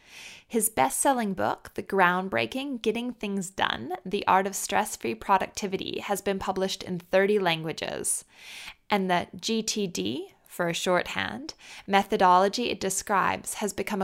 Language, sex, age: English, female, 20-39